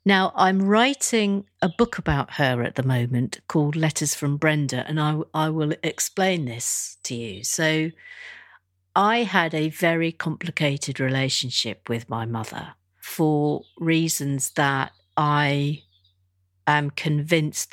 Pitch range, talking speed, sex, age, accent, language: 130-165 Hz, 130 wpm, female, 50-69, British, English